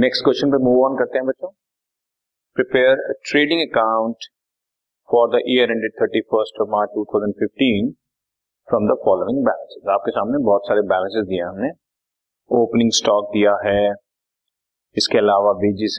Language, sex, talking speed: Hindi, male, 115 wpm